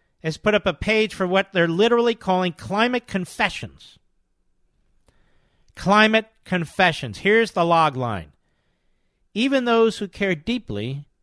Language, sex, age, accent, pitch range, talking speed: English, male, 50-69, American, 140-200 Hz, 125 wpm